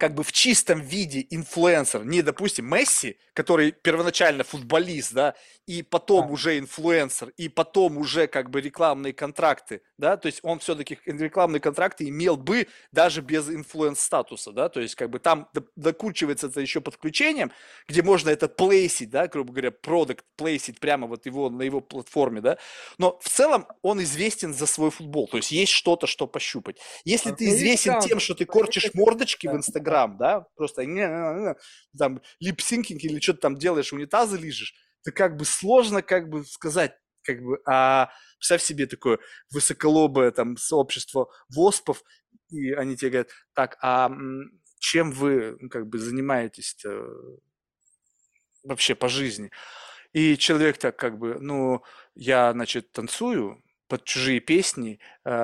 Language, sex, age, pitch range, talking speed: Russian, male, 30-49, 135-175 Hz, 150 wpm